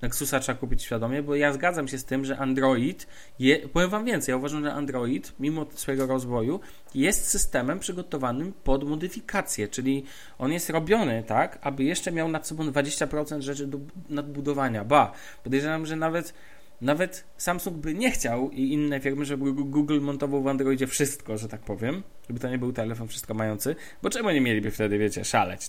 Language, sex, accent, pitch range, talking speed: Polish, male, native, 125-160 Hz, 180 wpm